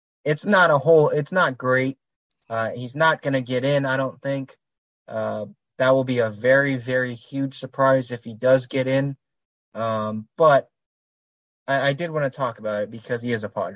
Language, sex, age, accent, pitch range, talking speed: English, male, 20-39, American, 120-140 Hz, 200 wpm